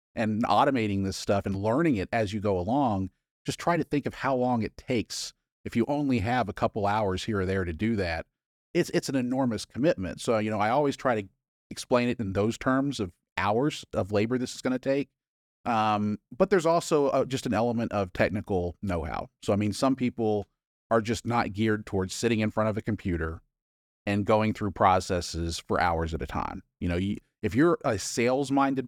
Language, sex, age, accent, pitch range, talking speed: English, male, 40-59, American, 95-125 Hz, 210 wpm